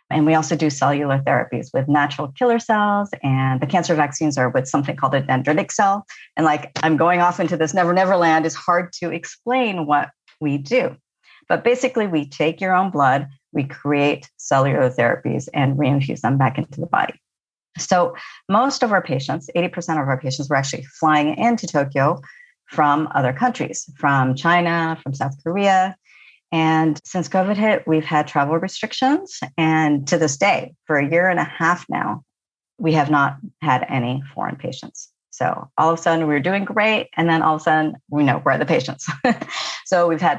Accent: American